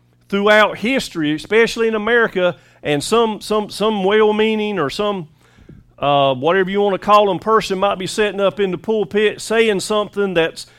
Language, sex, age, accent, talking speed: English, male, 40-59, American, 165 wpm